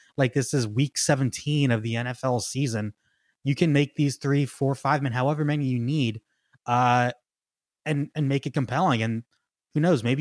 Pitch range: 115-150 Hz